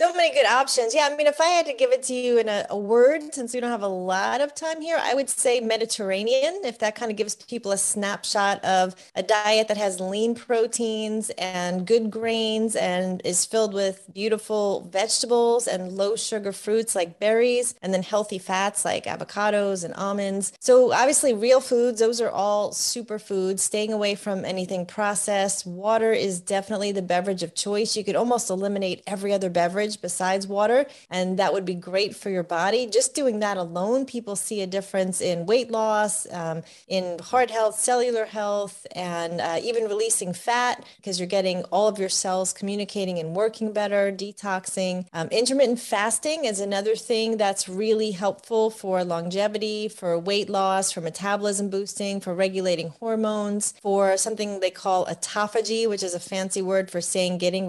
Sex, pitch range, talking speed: female, 190-225 Hz, 180 wpm